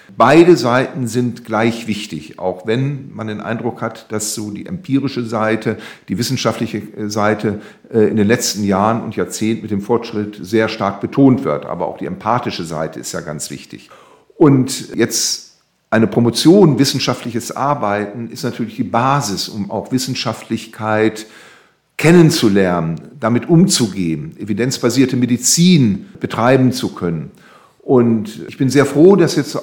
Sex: male